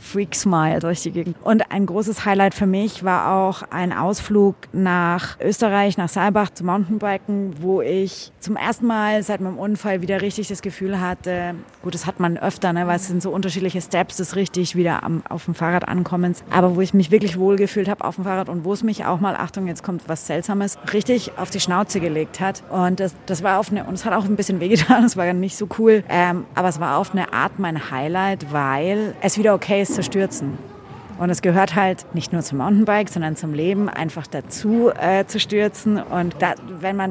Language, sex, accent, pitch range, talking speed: German, female, German, 175-200 Hz, 220 wpm